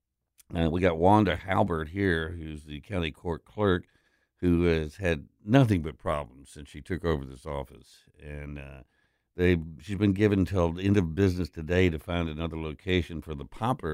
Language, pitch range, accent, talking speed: English, 75-95 Hz, American, 175 wpm